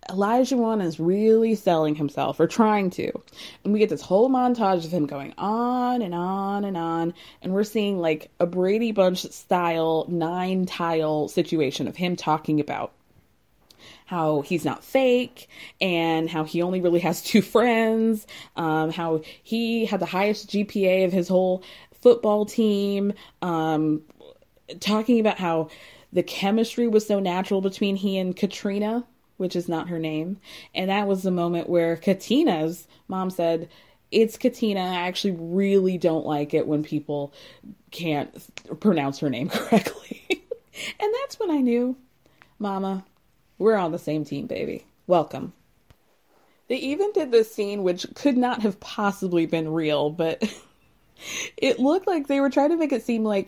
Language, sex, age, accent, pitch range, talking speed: English, female, 20-39, American, 165-225 Hz, 160 wpm